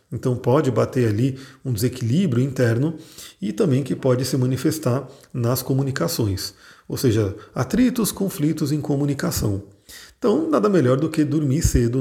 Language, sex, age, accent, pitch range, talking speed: Portuguese, male, 40-59, Brazilian, 125-160 Hz, 140 wpm